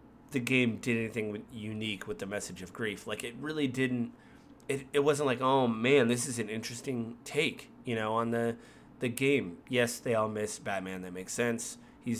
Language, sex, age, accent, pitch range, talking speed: English, male, 30-49, American, 110-130 Hz, 195 wpm